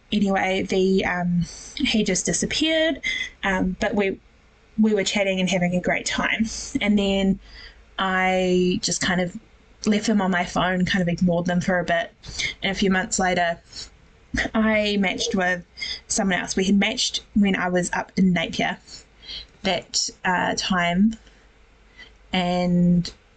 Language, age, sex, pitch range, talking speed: English, 20-39, female, 180-220 Hz, 150 wpm